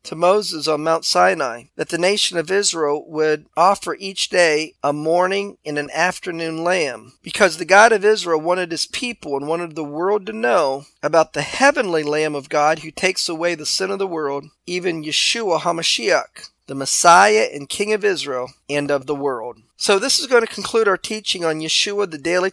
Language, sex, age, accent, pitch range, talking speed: English, male, 40-59, American, 150-200 Hz, 195 wpm